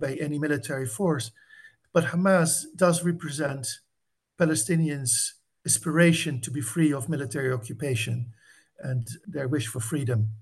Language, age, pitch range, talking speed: English, 60-79, 125-160 Hz, 120 wpm